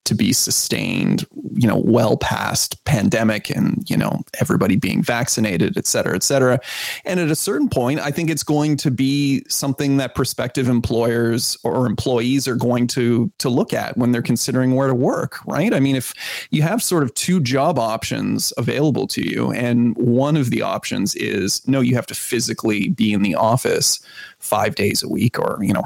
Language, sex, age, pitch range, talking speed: English, male, 30-49, 120-140 Hz, 195 wpm